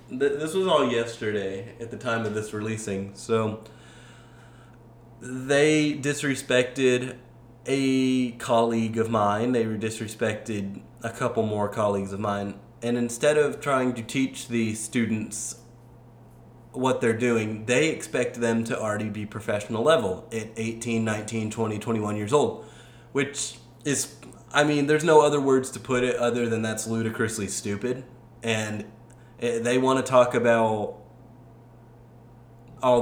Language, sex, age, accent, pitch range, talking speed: English, male, 30-49, American, 110-120 Hz, 135 wpm